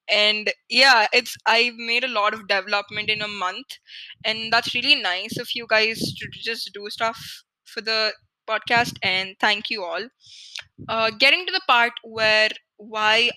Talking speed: 165 wpm